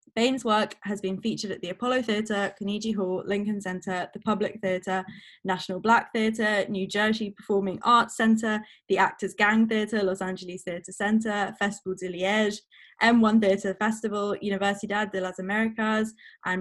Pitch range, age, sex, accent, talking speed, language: 185-220 Hz, 10-29, female, British, 155 wpm, English